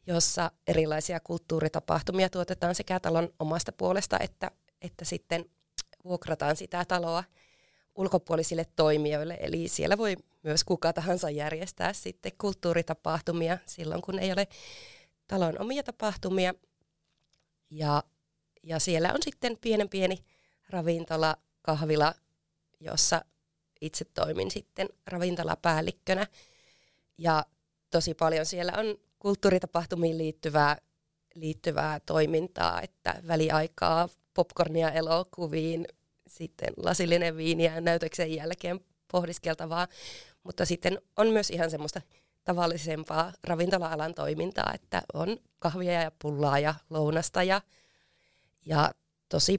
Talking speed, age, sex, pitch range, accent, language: 100 wpm, 30-49, female, 160-180 Hz, native, Finnish